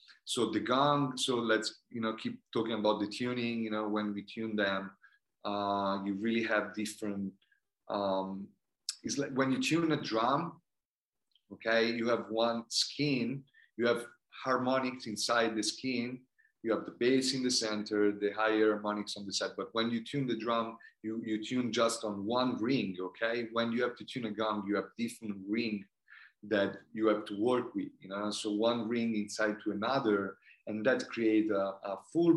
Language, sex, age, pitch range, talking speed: English, male, 30-49, 105-125 Hz, 185 wpm